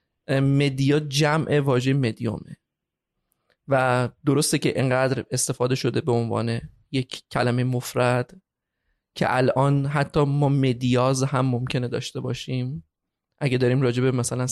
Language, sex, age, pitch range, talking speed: Persian, male, 20-39, 125-155 Hz, 120 wpm